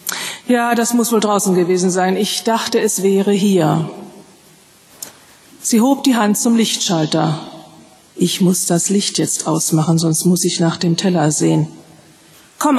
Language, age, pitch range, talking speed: German, 40-59, 180-230 Hz, 150 wpm